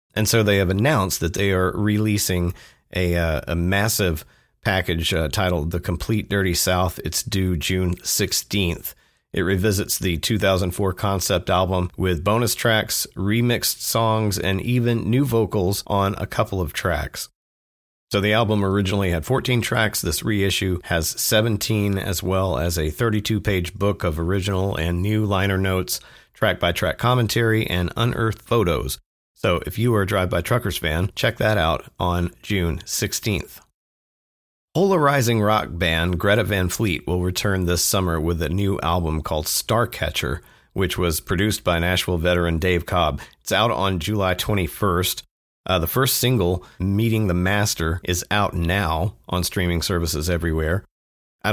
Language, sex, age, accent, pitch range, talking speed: English, male, 40-59, American, 85-105 Hz, 150 wpm